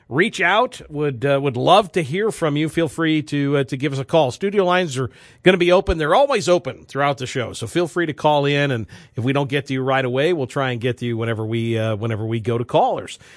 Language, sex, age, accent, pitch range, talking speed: English, male, 50-69, American, 130-165 Hz, 275 wpm